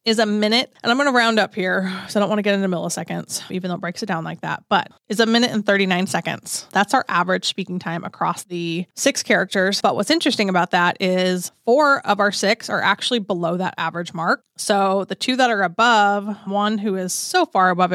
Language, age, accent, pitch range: English, 20-39, American, 185-230 Hz